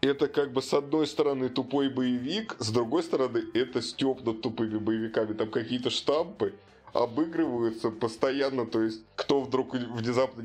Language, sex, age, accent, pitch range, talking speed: Russian, male, 20-39, native, 110-135 Hz, 145 wpm